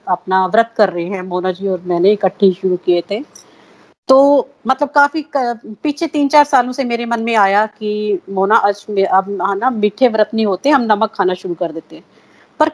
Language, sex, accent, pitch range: Hindi, female, native, 200-260 Hz